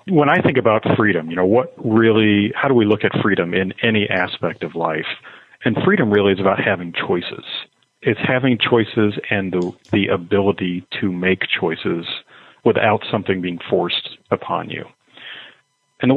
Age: 40-59